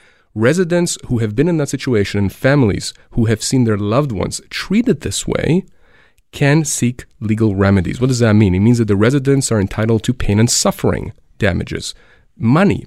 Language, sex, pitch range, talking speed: English, male, 105-130 Hz, 180 wpm